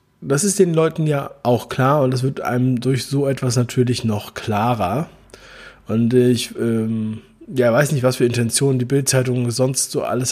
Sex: male